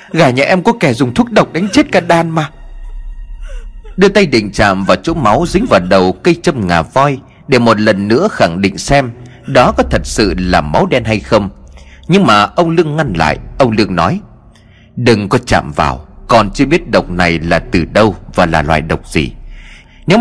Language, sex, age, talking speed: Vietnamese, male, 30-49, 210 wpm